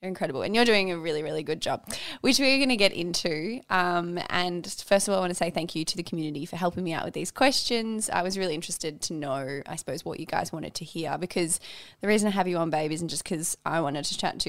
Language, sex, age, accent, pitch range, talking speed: English, female, 20-39, Australian, 170-205 Hz, 275 wpm